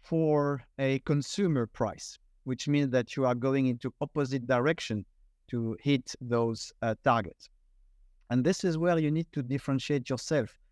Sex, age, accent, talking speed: male, 50-69, French, 150 wpm